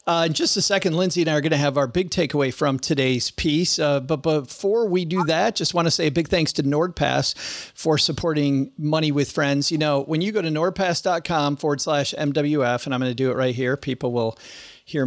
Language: English